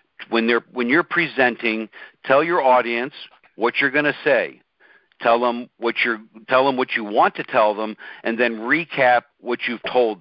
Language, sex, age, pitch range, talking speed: English, male, 50-69, 120-145 Hz, 180 wpm